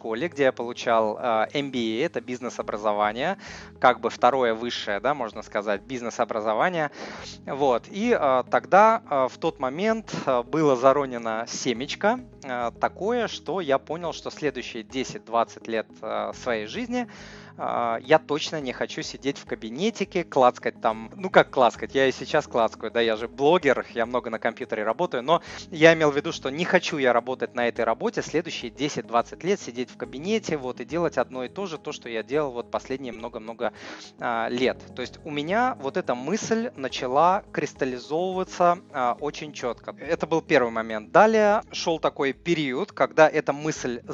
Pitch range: 120-160 Hz